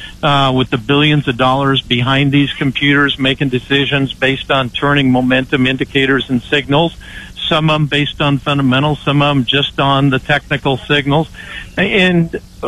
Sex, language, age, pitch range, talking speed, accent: male, English, 50-69, 135-170 Hz, 155 wpm, American